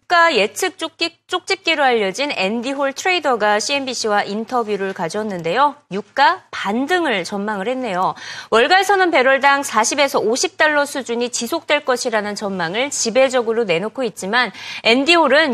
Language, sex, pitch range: Korean, female, 210-305 Hz